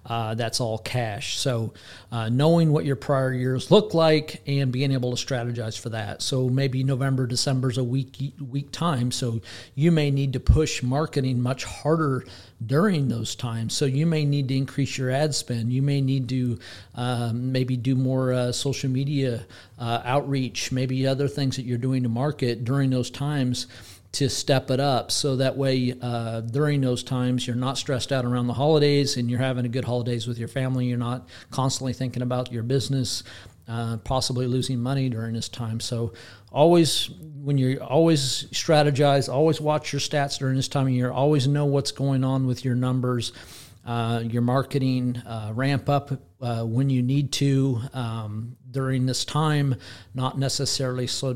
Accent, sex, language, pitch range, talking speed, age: American, male, English, 120-140 Hz, 180 wpm, 40-59